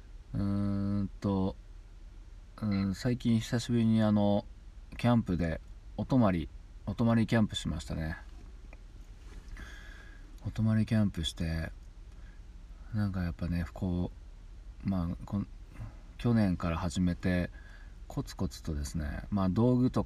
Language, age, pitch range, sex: Japanese, 40-59, 85-105 Hz, male